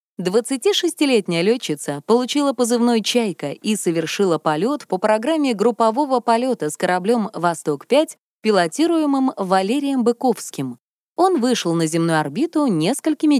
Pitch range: 170-255 Hz